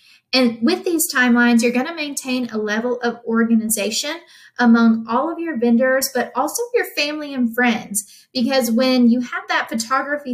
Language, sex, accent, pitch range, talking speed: English, female, American, 225-260 Hz, 165 wpm